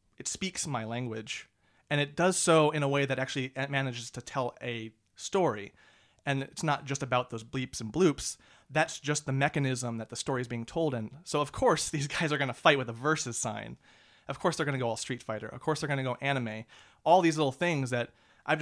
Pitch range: 125-155 Hz